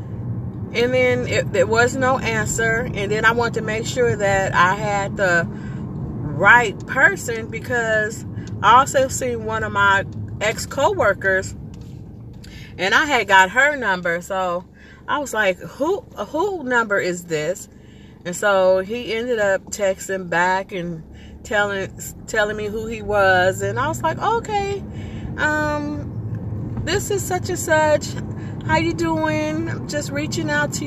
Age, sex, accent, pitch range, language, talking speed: 30-49, female, American, 165-225 Hz, English, 145 wpm